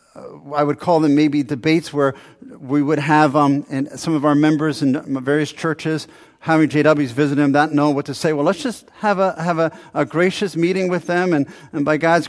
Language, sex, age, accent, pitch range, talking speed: English, male, 50-69, American, 145-175 Hz, 215 wpm